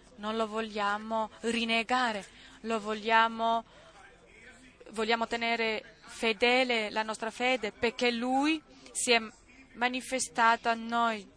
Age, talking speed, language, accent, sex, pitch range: 20-39, 95 wpm, Italian, native, female, 215-240 Hz